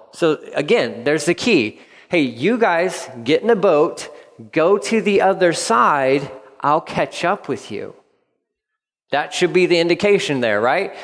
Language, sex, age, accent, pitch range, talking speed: English, male, 40-59, American, 140-210 Hz, 160 wpm